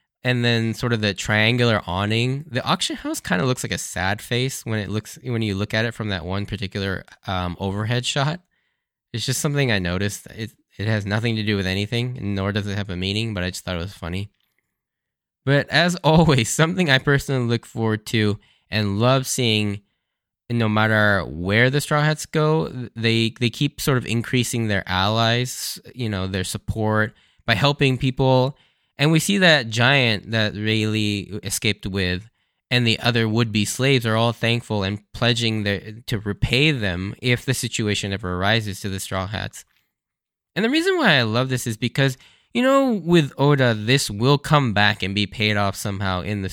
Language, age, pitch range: English, 10-29, 100-130 Hz